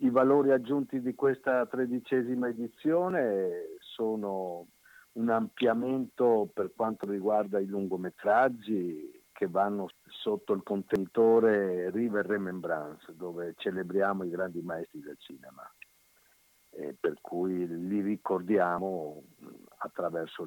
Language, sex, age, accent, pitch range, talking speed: Italian, male, 50-69, native, 95-130 Hz, 105 wpm